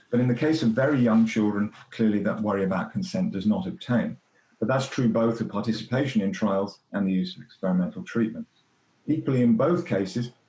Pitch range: 105-135 Hz